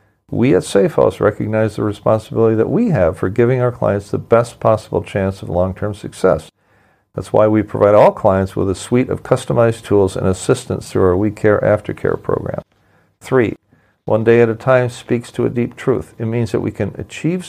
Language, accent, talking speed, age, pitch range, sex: English, American, 195 wpm, 50-69, 105-120 Hz, male